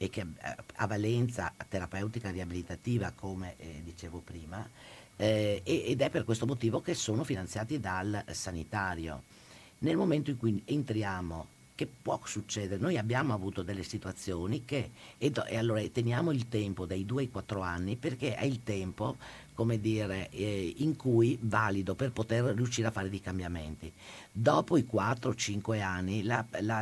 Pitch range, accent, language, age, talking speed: 95-115 Hz, native, Italian, 50-69, 160 wpm